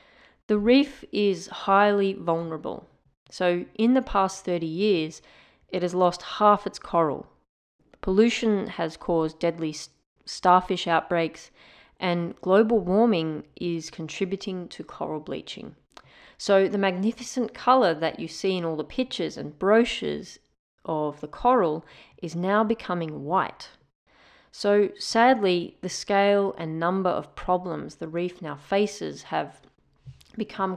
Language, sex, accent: English, female, Australian